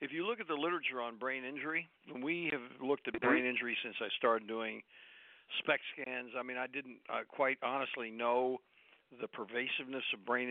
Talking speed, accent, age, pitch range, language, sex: 190 wpm, American, 60-79, 120-145 Hz, English, male